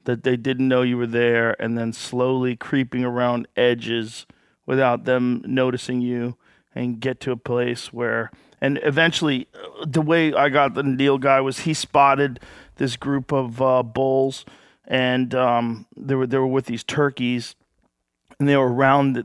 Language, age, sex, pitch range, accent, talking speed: English, 40-59, male, 120-135 Hz, American, 160 wpm